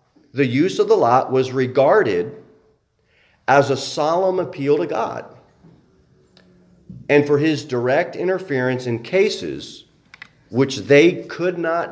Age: 40-59